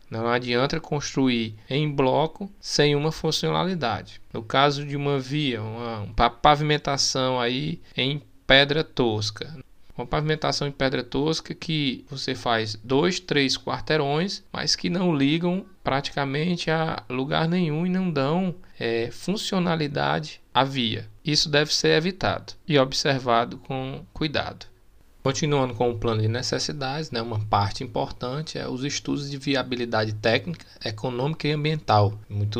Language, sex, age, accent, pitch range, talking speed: Portuguese, male, 20-39, Brazilian, 115-150 Hz, 130 wpm